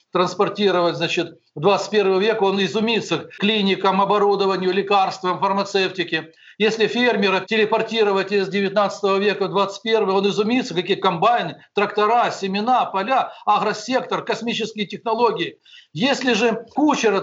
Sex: male